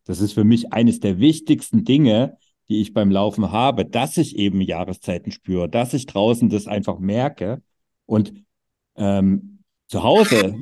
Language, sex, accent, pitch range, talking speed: German, male, German, 95-115 Hz, 160 wpm